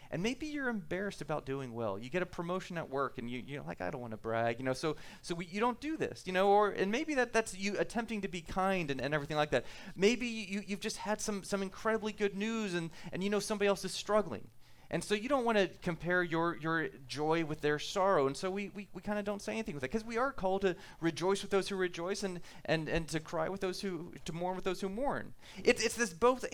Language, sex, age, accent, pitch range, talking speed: English, male, 30-49, American, 145-205 Hz, 270 wpm